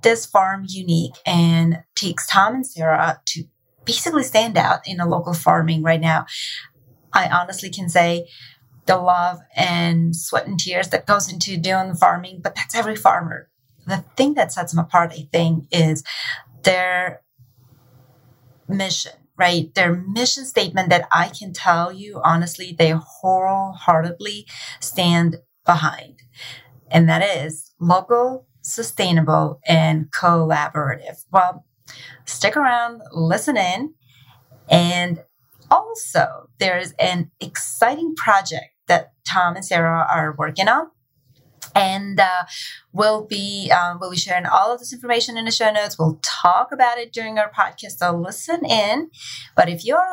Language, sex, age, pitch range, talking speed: English, female, 30-49, 160-200 Hz, 140 wpm